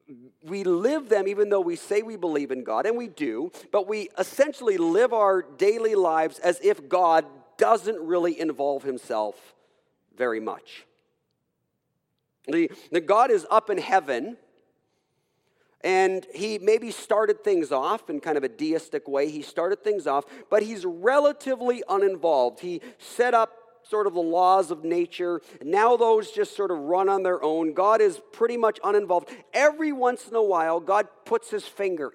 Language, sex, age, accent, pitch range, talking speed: English, male, 40-59, American, 160-265 Hz, 165 wpm